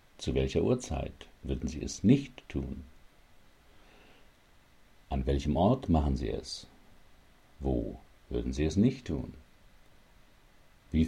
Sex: male